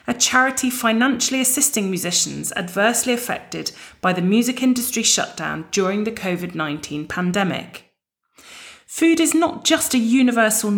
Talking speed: 120 wpm